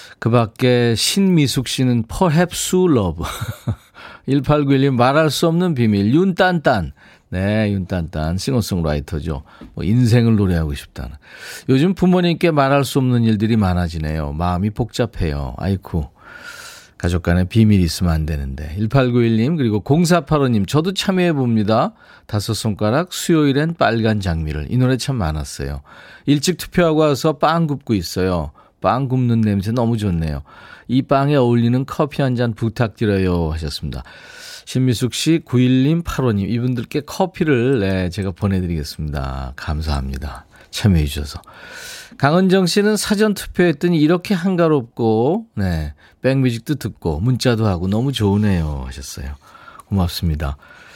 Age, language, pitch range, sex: 40-59, Korean, 90-140 Hz, male